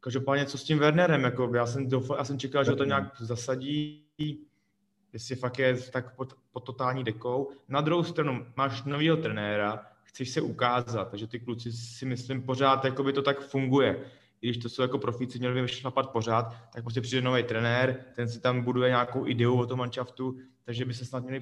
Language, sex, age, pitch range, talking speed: Czech, male, 20-39, 115-140 Hz, 190 wpm